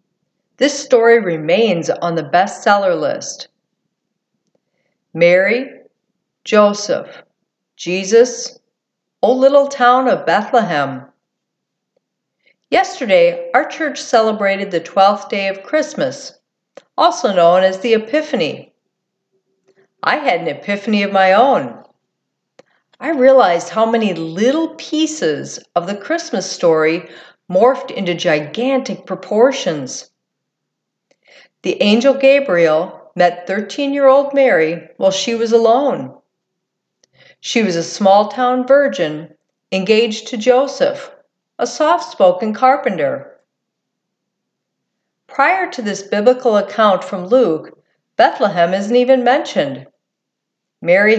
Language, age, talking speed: English, 50-69, 95 wpm